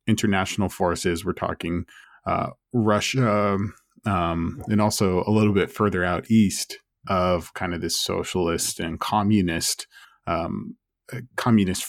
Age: 20-39